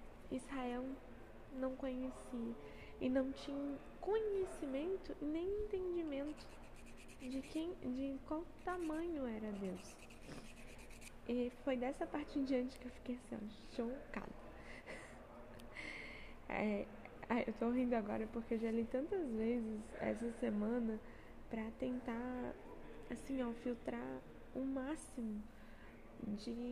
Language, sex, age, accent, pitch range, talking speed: Portuguese, female, 10-29, Brazilian, 220-280 Hz, 110 wpm